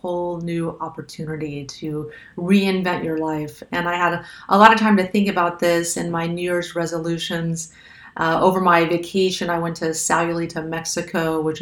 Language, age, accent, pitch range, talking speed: English, 40-59, American, 155-175 Hz, 170 wpm